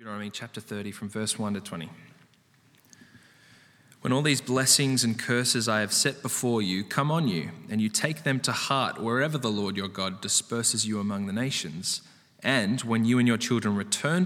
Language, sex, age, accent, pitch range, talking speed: English, male, 20-39, Australian, 110-140 Hz, 205 wpm